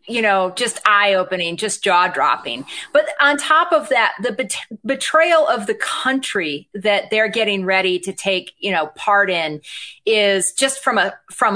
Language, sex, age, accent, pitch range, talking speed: English, female, 30-49, American, 200-285 Hz, 175 wpm